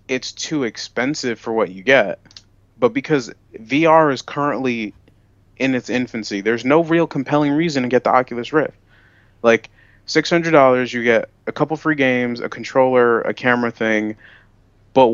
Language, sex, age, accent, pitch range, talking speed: English, male, 30-49, American, 105-145 Hz, 155 wpm